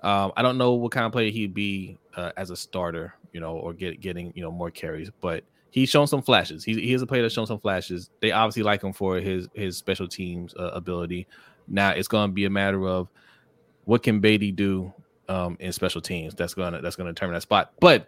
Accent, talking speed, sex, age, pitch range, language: American, 245 wpm, male, 20-39, 90-110 Hz, English